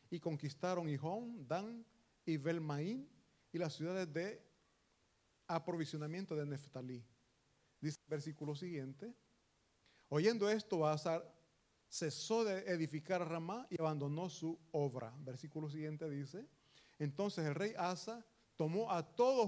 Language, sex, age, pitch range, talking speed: Italian, male, 40-59, 150-200 Hz, 115 wpm